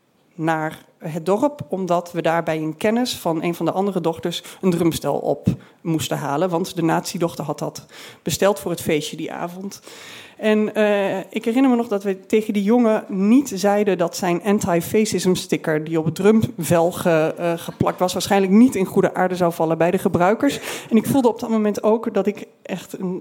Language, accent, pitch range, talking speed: Dutch, Dutch, 170-215 Hz, 195 wpm